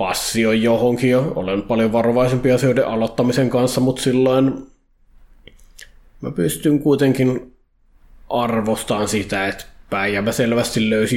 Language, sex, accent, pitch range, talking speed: Finnish, male, native, 115-130 Hz, 105 wpm